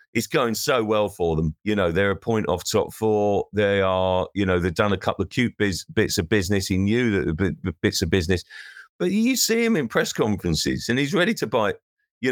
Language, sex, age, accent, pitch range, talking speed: English, male, 40-59, British, 90-115 Hz, 230 wpm